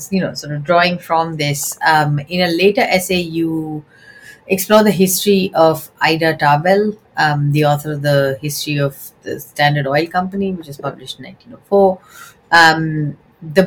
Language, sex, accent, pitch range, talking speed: English, female, Indian, 150-190 Hz, 160 wpm